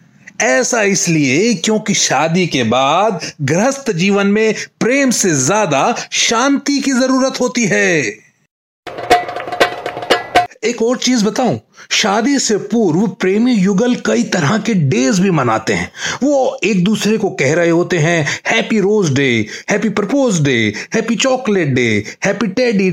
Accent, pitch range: native, 165-230 Hz